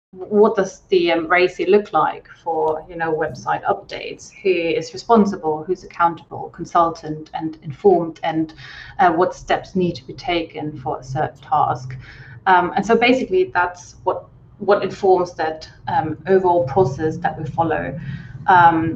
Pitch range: 160-190 Hz